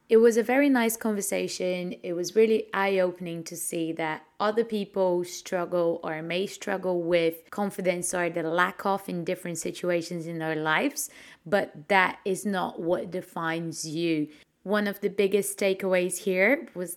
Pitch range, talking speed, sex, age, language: 170-205 Hz, 160 wpm, female, 20-39, English